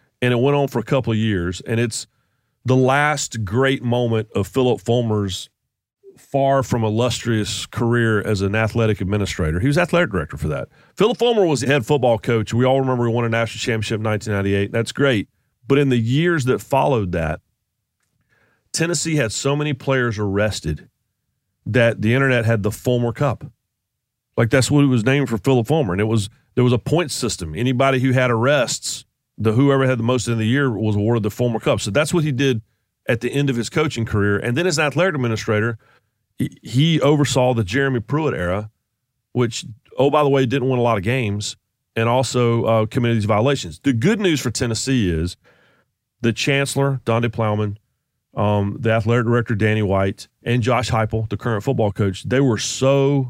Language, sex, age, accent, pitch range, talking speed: English, male, 40-59, American, 110-135 Hz, 195 wpm